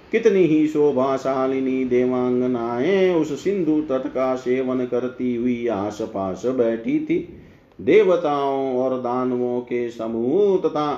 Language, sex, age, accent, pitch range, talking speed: Hindi, male, 40-59, native, 125-165 Hz, 75 wpm